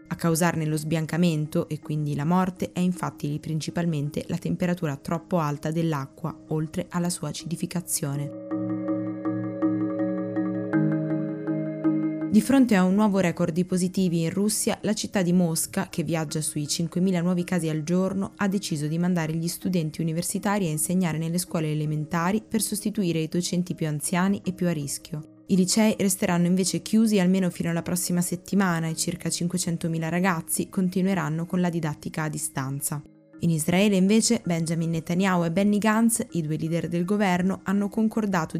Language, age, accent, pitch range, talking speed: Italian, 20-39, native, 160-190 Hz, 155 wpm